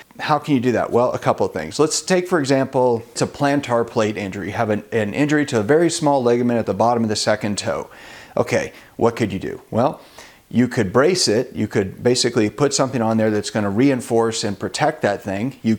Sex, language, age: male, English, 40-59